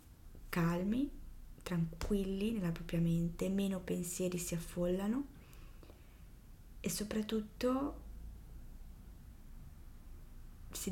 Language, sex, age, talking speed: Italian, female, 20-39, 65 wpm